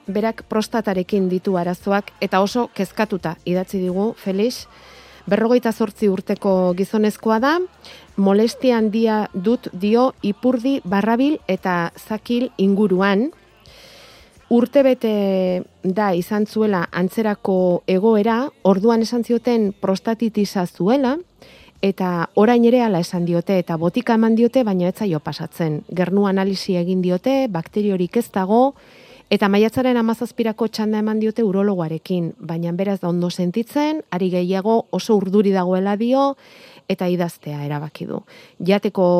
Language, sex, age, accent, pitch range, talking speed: Spanish, female, 30-49, Spanish, 185-225 Hz, 115 wpm